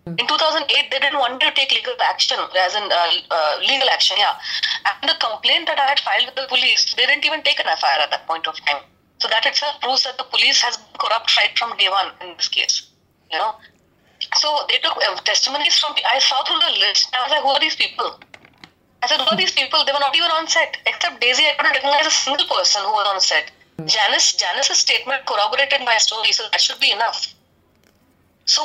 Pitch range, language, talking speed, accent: 220-310 Hz, English, 235 wpm, Indian